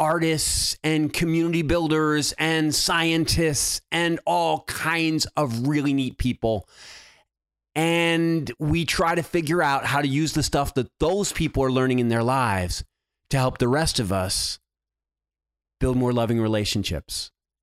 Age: 30-49